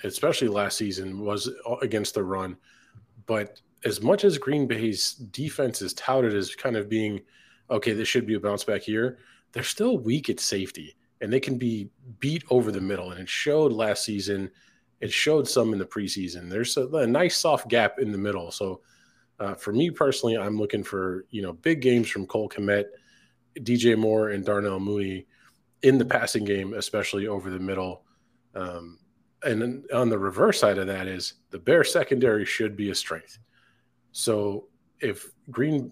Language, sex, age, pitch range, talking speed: English, male, 20-39, 100-120 Hz, 180 wpm